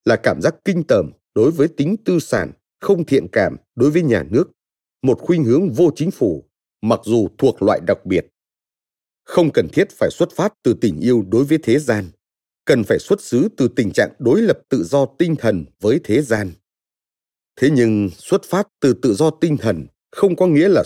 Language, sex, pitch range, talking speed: Vietnamese, male, 100-160 Hz, 205 wpm